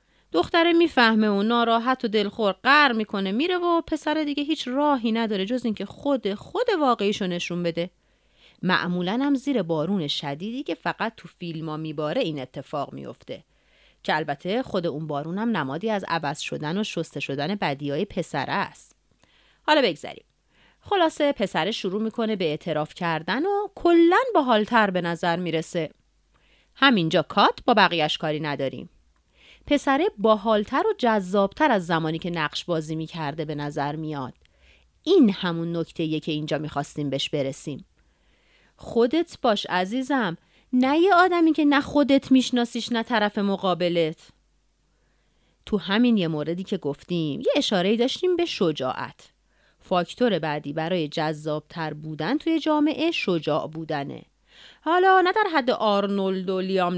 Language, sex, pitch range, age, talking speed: Persian, female, 160-255 Hz, 30-49, 140 wpm